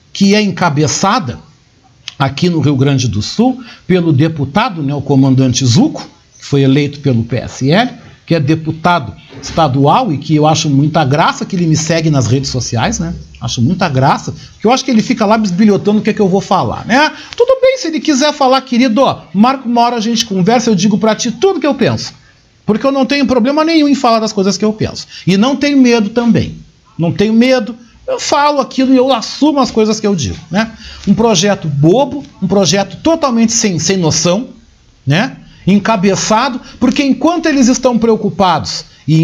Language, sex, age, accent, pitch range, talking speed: Portuguese, male, 60-79, Brazilian, 145-235 Hz, 195 wpm